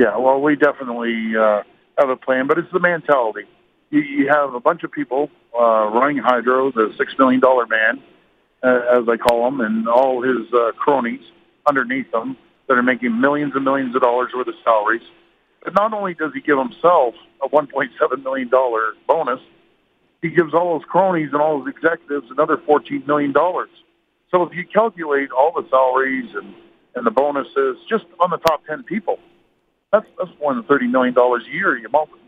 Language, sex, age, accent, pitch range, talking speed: English, male, 50-69, American, 125-165 Hz, 180 wpm